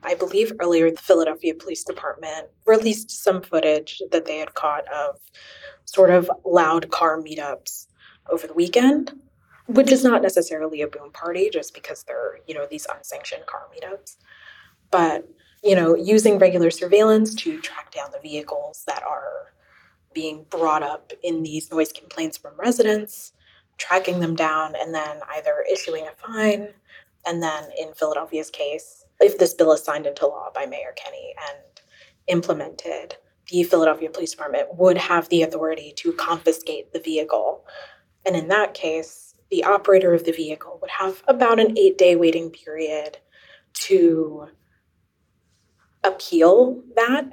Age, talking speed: 20-39, 150 wpm